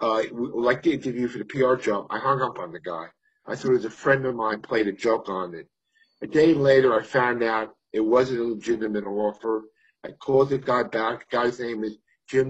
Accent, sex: American, male